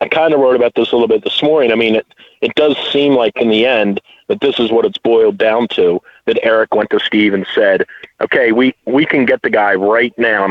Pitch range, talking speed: 110-135 Hz, 265 wpm